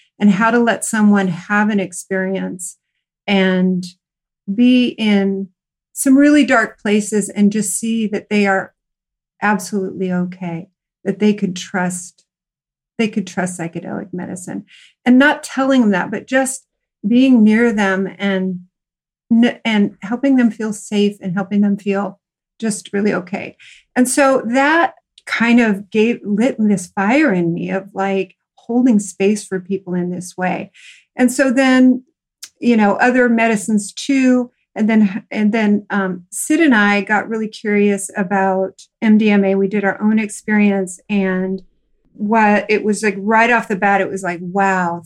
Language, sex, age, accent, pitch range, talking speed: English, female, 40-59, American, 190-230 Hz, 150 wpm